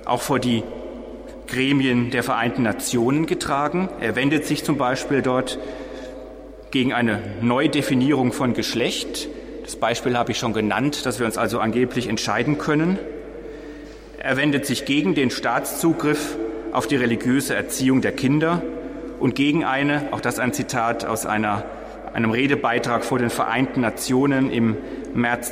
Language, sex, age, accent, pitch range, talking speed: German, male, 30-49, German, 120-150 Hz, 145 wpm